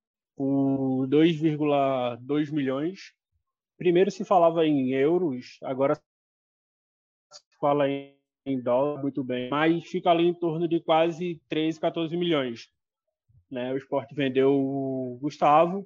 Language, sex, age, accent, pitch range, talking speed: Portuguese, male, 20-39, Brazilian, 140-170 Hz, 115 wpm